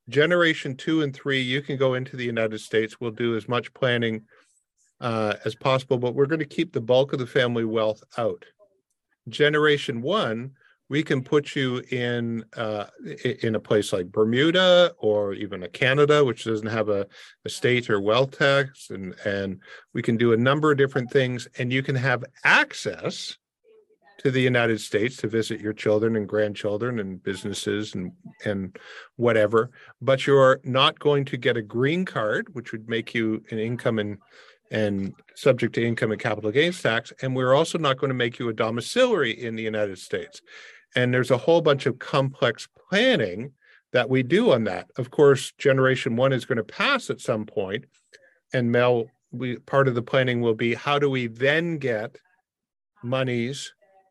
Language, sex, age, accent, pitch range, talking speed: English, male, 50-69, American, 110-140 Hz, 180 wpm